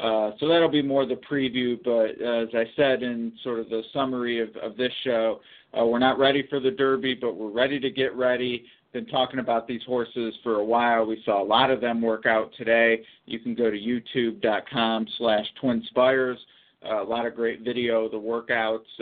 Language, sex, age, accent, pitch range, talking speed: English, male, 50-69, American, 115-130 Hz, 210 wpm